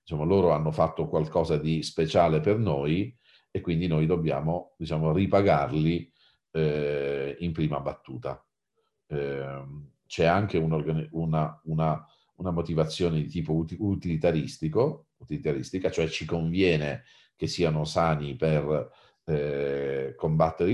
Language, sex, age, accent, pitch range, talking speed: Italian, male, 40-59, native, 75-80 Hz, 105 wpm